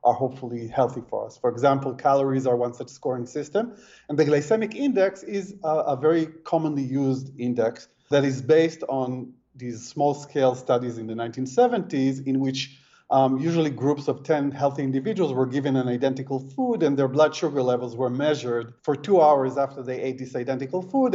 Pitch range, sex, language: 130-165 Hz, male, English